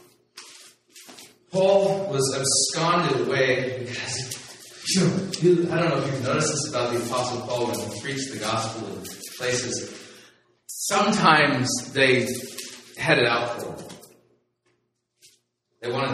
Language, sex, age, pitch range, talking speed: English, male, 30-49, 110-140 Hz, 125 wpm